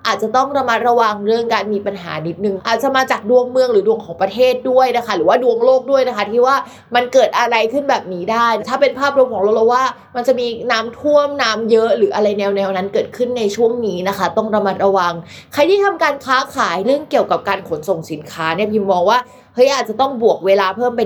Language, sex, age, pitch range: Thai, female, 20-39, 195-245 Hz